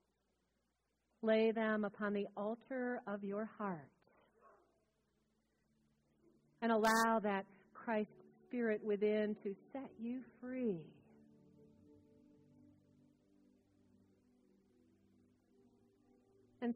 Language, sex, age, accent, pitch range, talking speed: English, female, 40-59, American, 190-225 Hz, 70 wpm